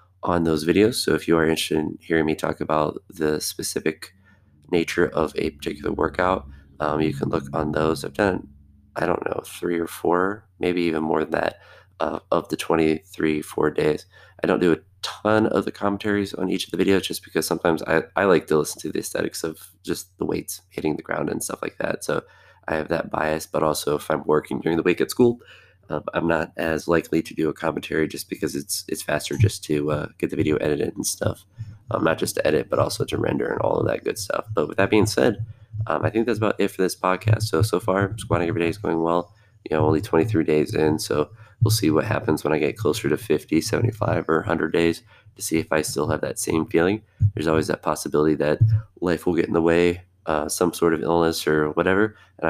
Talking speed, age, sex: 235 wpm, 20-39, male